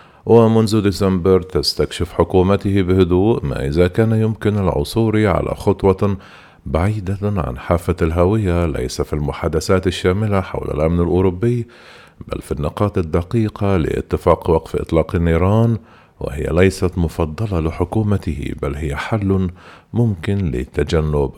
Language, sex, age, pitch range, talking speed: Arabic, male, 50-69, 80-105 Hz, 110 wpm